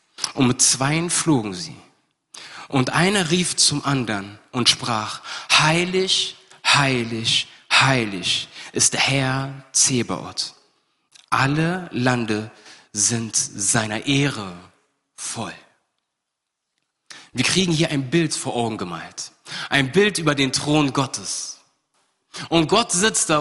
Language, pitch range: German, 130-180 Hz